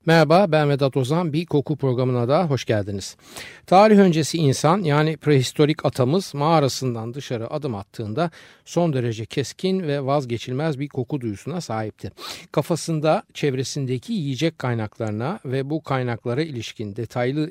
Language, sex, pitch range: Turkish, male, 115-160 Hz